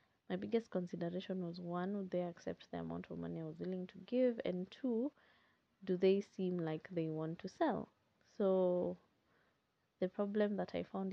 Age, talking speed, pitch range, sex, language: 20-39, 180 wpm, 170-225 Hz, female, English